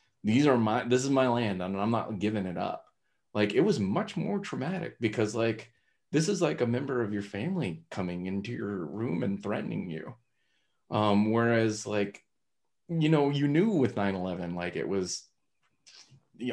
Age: 30-49